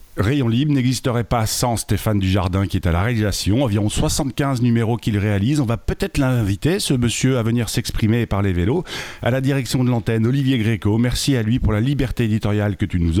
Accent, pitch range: French, 100-125 Hz